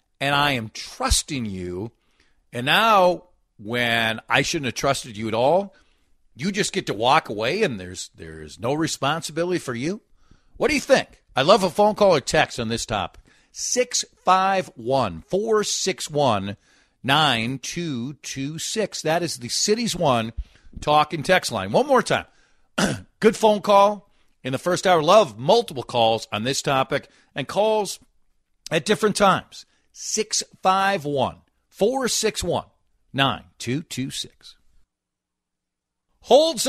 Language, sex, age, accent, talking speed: English, male, 50-69, American, 135 wpm